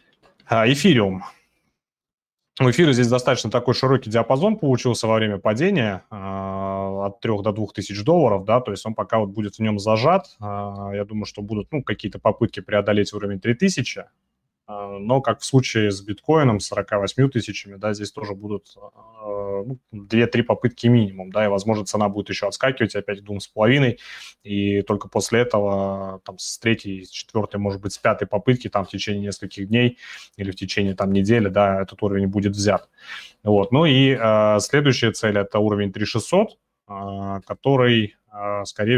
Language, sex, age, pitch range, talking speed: Russian, male, 20-39, 100-115 Hz, 165 wpm